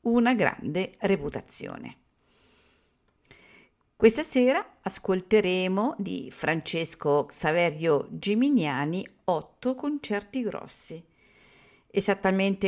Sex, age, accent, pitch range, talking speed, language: female, 50-69, native, 160-215 Hz, 65 wpm, Italian